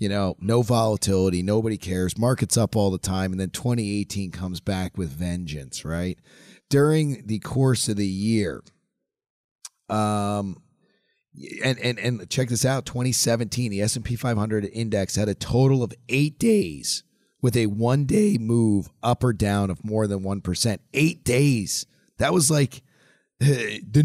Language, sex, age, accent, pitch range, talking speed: English, male, 30-49, American, 100-130 Hz, 150 wpm